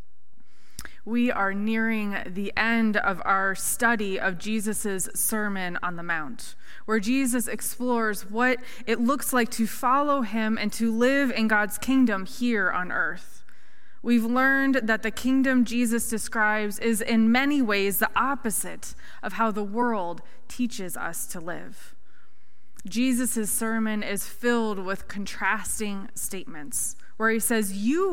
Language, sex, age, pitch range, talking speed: English, female, 20-39, 210-245 Hz, 140 wpm